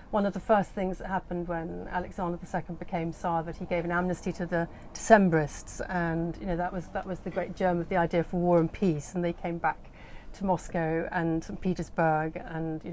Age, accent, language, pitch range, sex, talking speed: 40-59, British, English, 170-205 Hz, female, 225 wpm